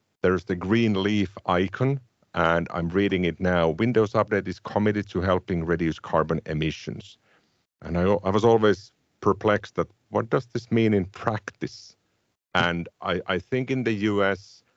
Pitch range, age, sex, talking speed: 85-105 Hz, 50-69, male, 160 wpm